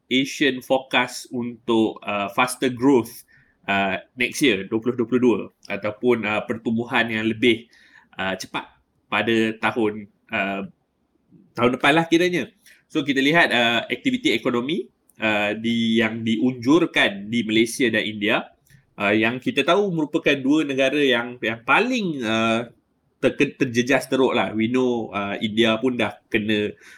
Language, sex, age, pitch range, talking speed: Malay, male, 20-39, 110-145 Hz, 135 wpm